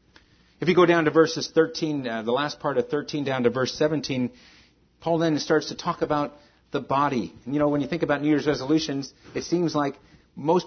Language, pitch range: English, 105-155 Hz